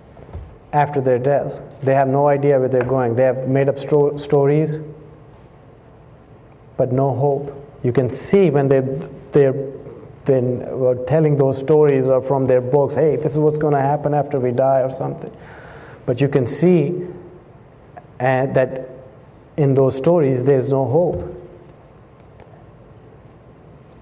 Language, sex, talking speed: English, male, 135 wpm